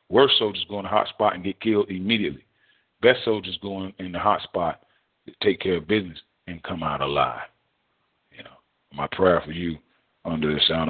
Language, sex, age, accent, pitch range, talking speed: English, male, 40-59, American, 90-140 Hz, 200 wpm